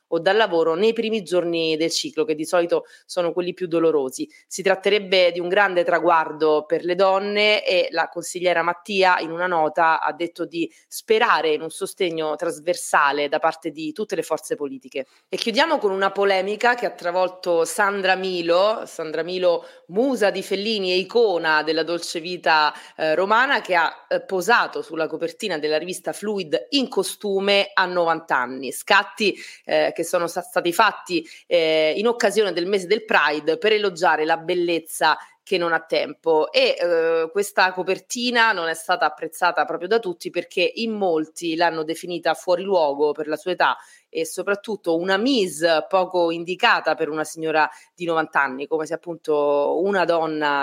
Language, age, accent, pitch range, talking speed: Italian, 30-49, native, 160-200 Hz, 170 wpm